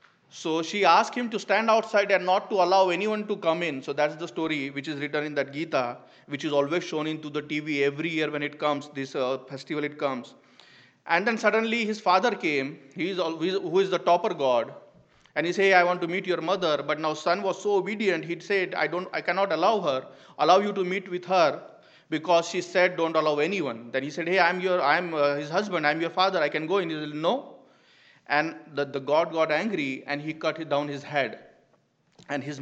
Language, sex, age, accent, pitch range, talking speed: English, male, 30-49, Indian, 145-180 Hz, 230 wpm